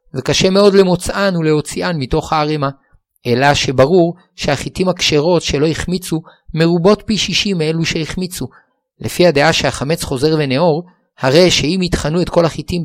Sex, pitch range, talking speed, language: male, 135-175 Hz, 130 wpm, Hebrew